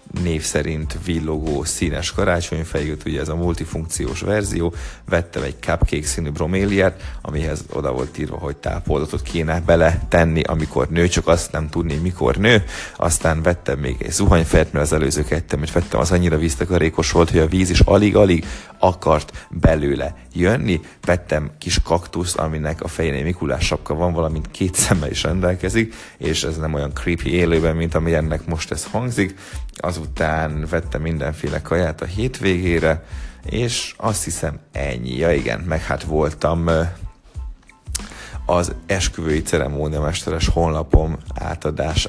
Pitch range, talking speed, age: 75-90 Hz, 145 wpm, 30-49